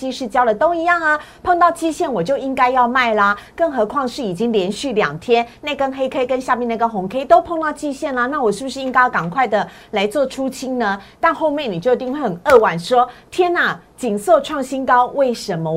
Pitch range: 210-280 Hz